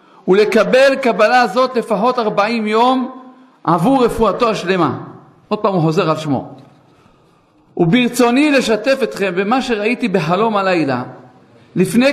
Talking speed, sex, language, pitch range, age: 115 wpm, male, Hebrew, 175-235 Hz, 50-69